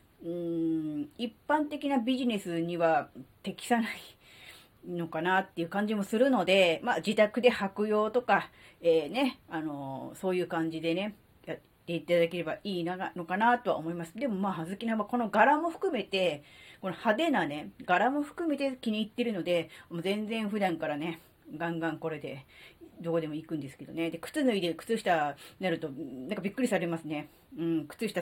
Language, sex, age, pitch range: Japanese, female, 30-49, 165-230 Hz